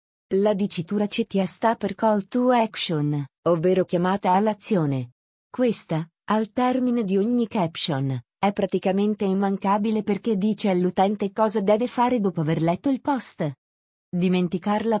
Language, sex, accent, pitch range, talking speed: Italian, female, native, 180-225 Hz, 130 wpm